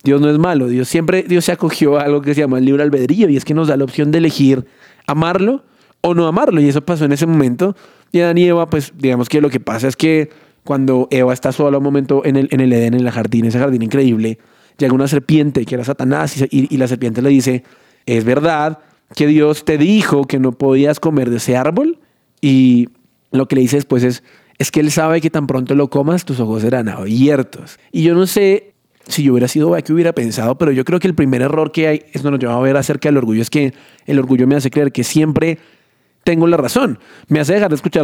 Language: Spanish